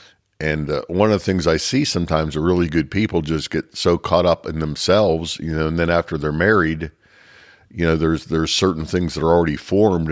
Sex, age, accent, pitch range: male, 50-69, American, 80-90 Hz